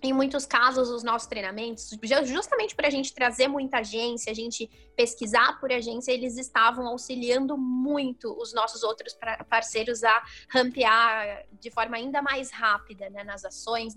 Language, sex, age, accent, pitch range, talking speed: Portuguese, female, 10-29, Brazilian, 225-265 Hz, 155 wpm